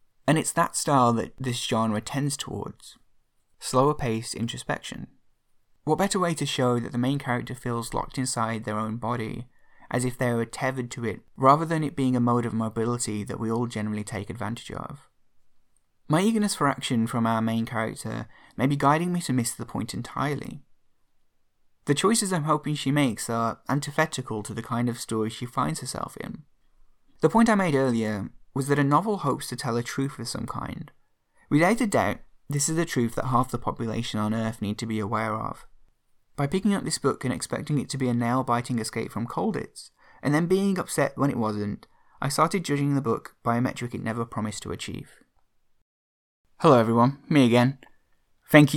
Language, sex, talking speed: English, male, 195 wpm